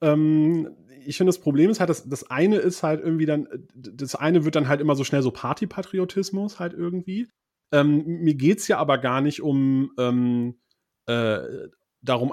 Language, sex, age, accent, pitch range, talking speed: German, male, 30-49, German, 125-165 Hz, 180 wpm